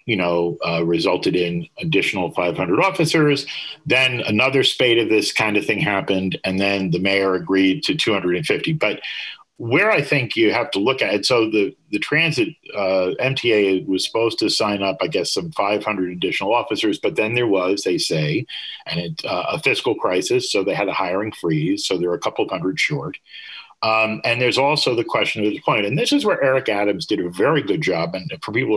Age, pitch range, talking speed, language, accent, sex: 40-59, 95-140 Hz, 205 wpm, English, American, male